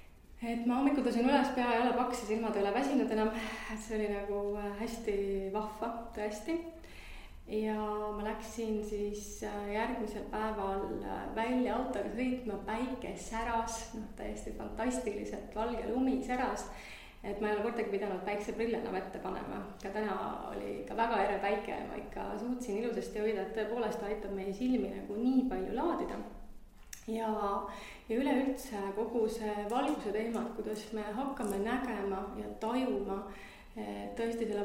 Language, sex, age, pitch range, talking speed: English, female, 30-49, 205-230 Hz, 140 wpm